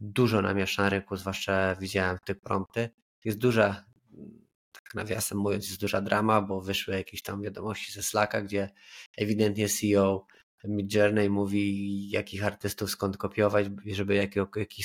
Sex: male